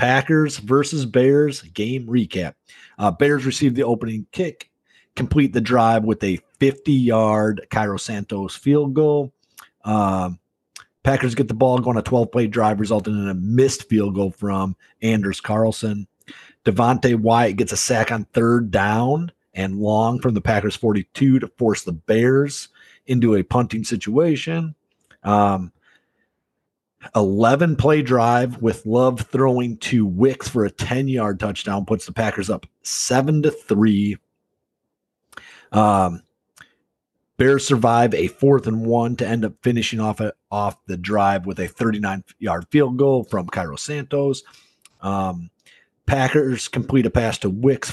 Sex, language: male, English